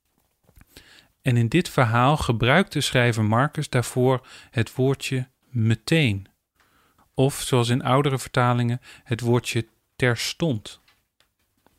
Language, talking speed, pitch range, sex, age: Dutch, 100 wpm, 120-145 Hz, male, 40-59